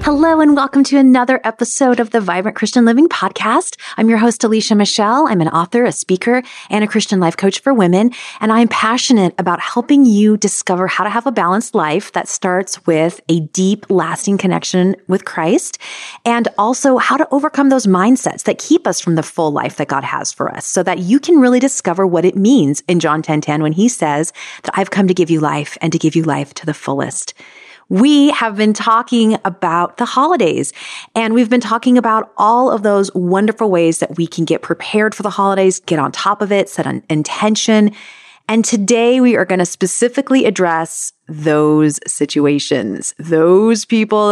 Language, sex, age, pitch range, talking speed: English, female, 30-49, 170-235 Hz, 200 wpm